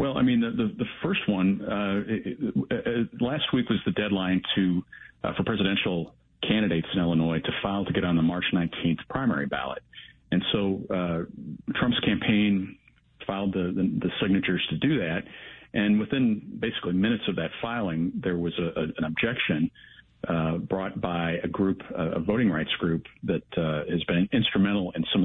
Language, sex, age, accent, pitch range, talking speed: English, male, 50-69, American, 85-100 Hz, 180 wpm